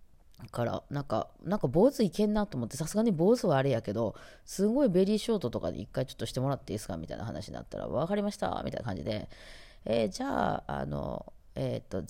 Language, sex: Japanese, female